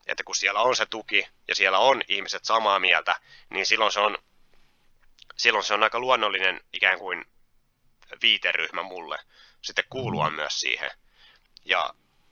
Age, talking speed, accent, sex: 30-49, 145 wpm, native, male